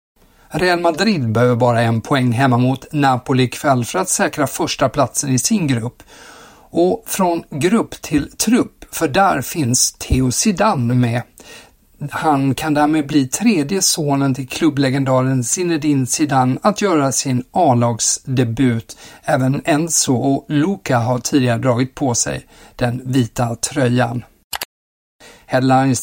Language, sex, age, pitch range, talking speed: Swedish, male, 50-69, 125-155 Hz, 130 wpm